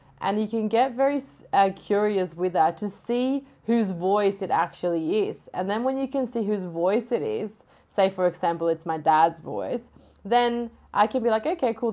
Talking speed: 200 wpm